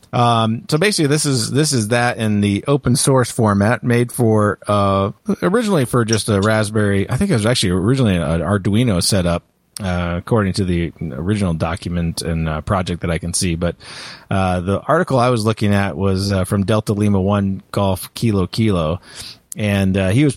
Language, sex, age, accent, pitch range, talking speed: English, male, 30-49, American, 95-120 Hz, 190 wpm